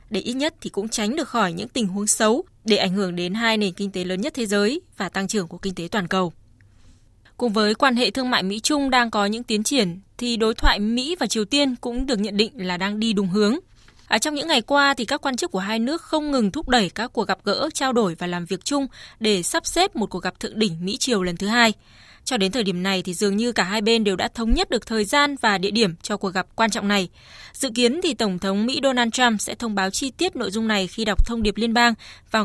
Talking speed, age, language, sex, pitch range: 275 wpm, 20-39, Vietnamese, female, 200-255 Hz